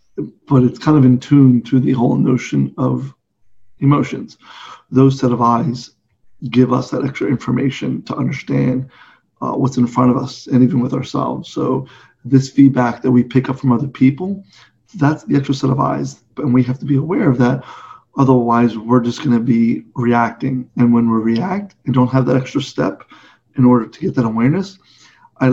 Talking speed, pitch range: 190 wpm, 120-135 Hz